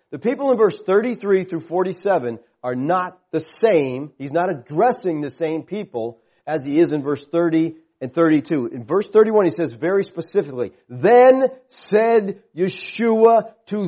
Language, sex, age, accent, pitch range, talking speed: English, male, 40-59, American, 145-220 Hz, 155 wpm